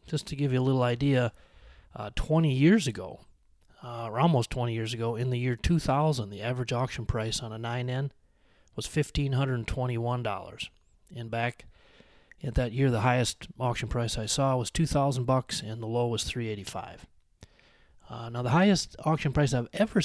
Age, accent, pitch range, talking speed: 30-49, American, 110-135 Hz, 170 wpm